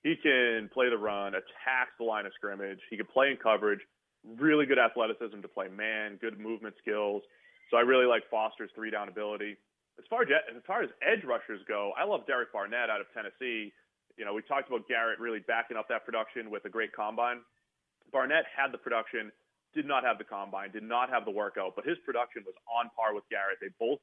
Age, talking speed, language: 30-49, 215 wpm, English